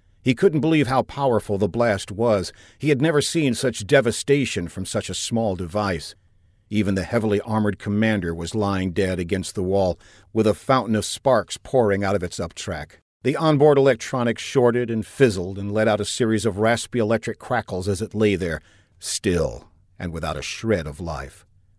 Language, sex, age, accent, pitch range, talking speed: English, male, 50-69, American, 100-130 Hz, 180 wpm